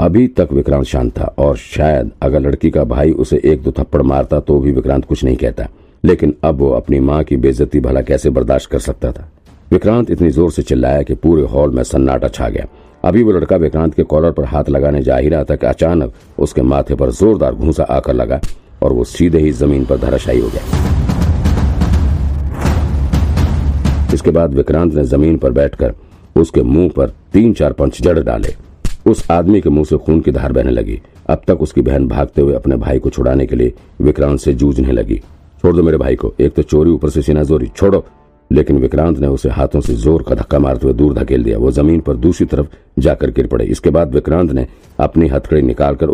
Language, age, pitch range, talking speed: Hindi, 50-69, 70-80 Hz, 180 wpm